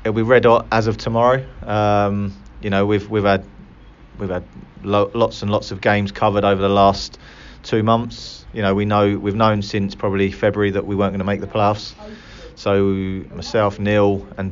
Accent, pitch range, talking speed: British, 95-105 Hz, 200 wpm